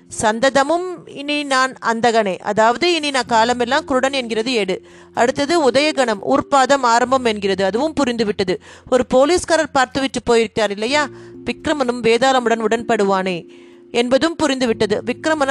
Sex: female